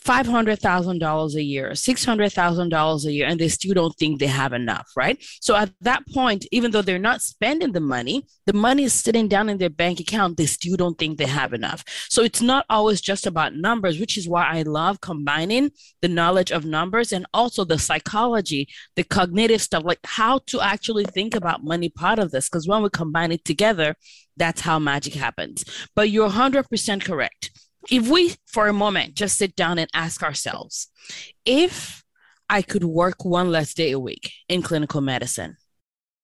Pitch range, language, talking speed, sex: 165-240 Hz, English, 185 wpm, female